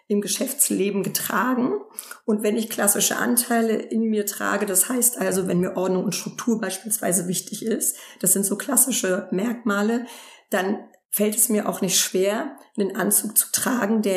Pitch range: 195-230 Hz